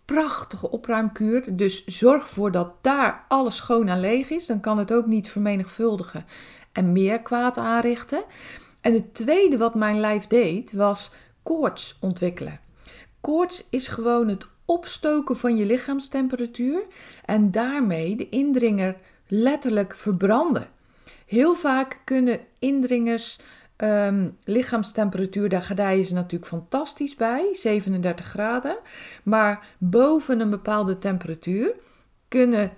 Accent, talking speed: Dutch, 125 wpm